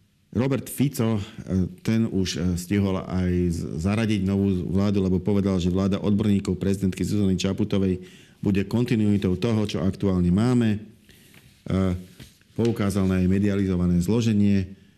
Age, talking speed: 50-69, 110 wpm